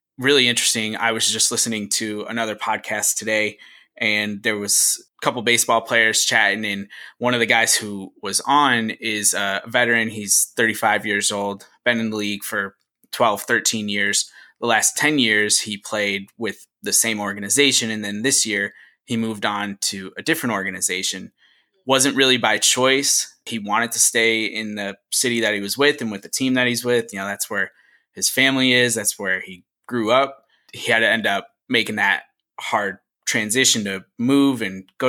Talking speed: 185 wpm